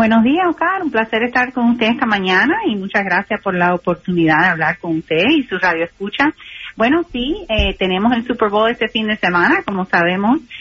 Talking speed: 210 wpm